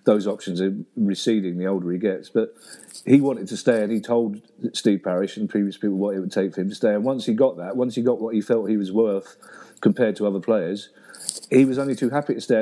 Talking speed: 255 wpm